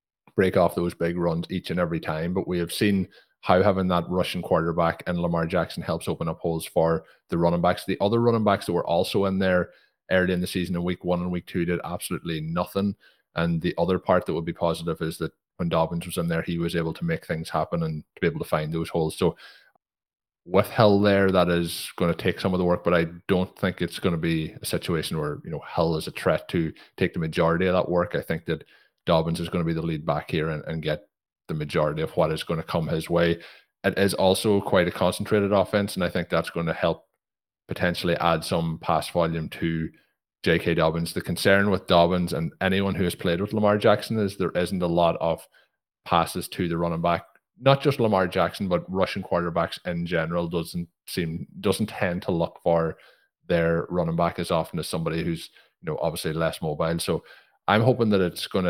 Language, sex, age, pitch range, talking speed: English, male, 30-49, 85-95 Hz, 230 wpm